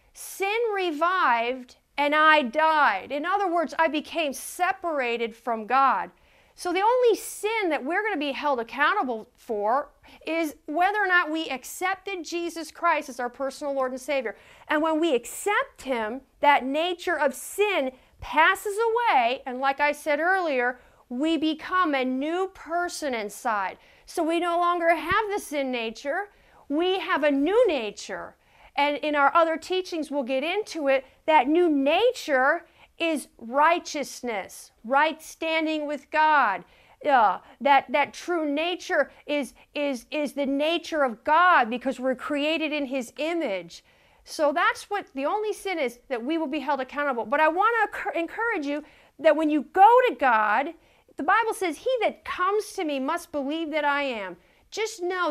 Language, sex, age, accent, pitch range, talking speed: English, female, 40-59, American, 275-360 Hz, 160 wpm